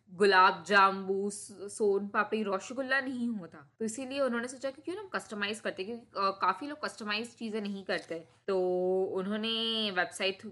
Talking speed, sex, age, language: 155 wpm, female, 20-39, Hindi